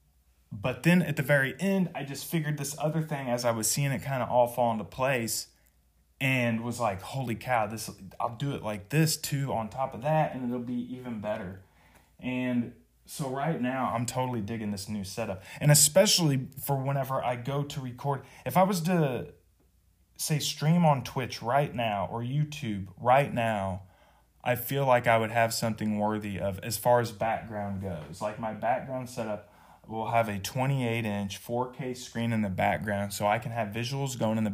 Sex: male